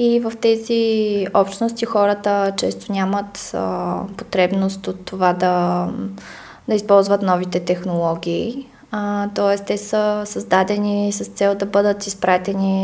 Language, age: Bulgarian, 20-39